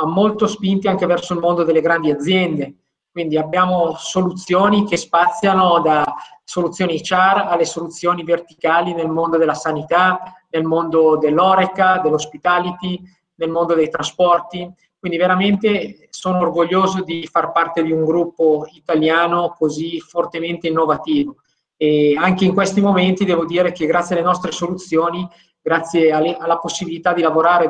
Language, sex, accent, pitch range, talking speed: Italian, male, native, 160-180 Hz, 135 wpm